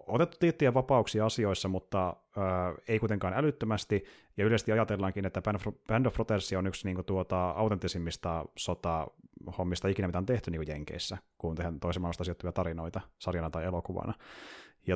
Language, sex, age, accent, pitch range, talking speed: Finnish, male, 30-49, native, 90-105 Hz, 155 wpm